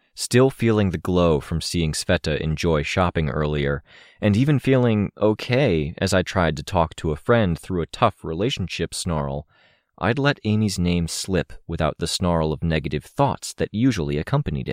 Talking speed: 165 wpm